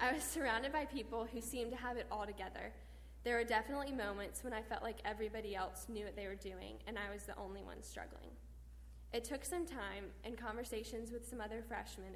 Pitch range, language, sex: 200-235 Hz, English, female